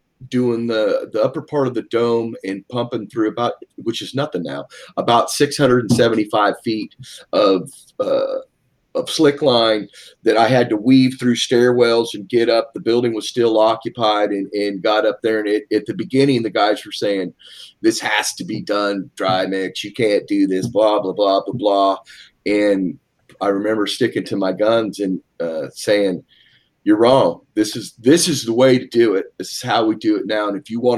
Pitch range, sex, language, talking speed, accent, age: 100-130 Hz, male, English, 195 wpm, American, 30-49